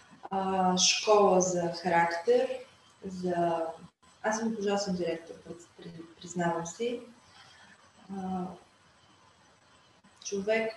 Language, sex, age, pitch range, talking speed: Bulgarian, female, 20-39, 185-215 Hz, 70 wpm